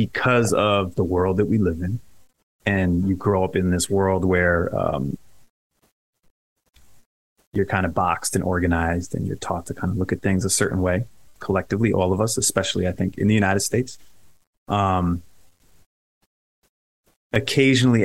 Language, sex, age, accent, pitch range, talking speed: English, male, 30-49, American, 95-105 Hz, 160 wpm